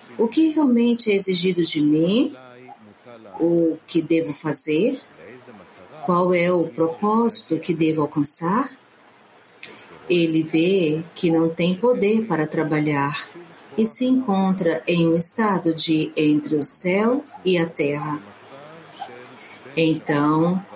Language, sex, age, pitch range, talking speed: English, female, 40-59, 160-200 Hz, 115 wpm